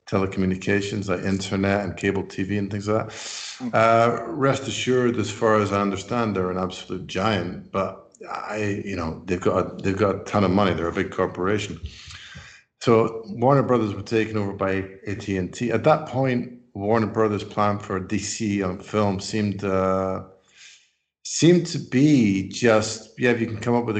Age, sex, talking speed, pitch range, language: 50-69, male, 175 wpm, 95-110 Hz, English